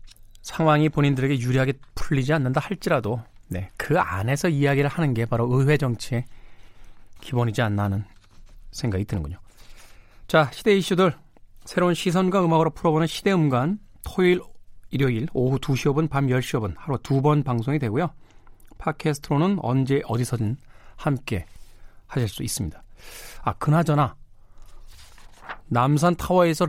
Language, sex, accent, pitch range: Korean, male, native, 105-155 Hz